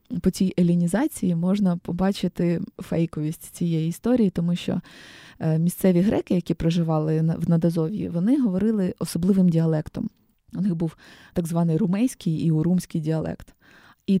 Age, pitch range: 20-39, 170-205 Hz